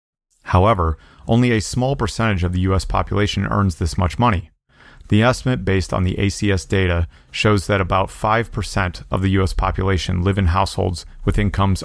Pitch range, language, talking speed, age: 90-105 Hz, English, 165 wpm, 30-49